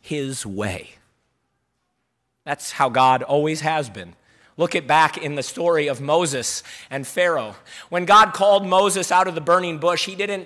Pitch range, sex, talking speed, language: 135-185 Hz, male, 165 wpm, English